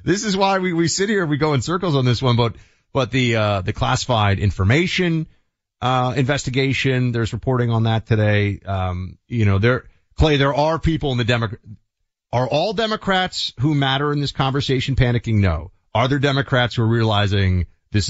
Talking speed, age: 185 wpm, 30-49